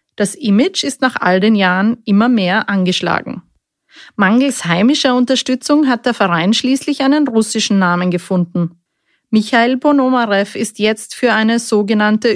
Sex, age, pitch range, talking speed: female, 30-49, 195-255 Hz, 135 wpm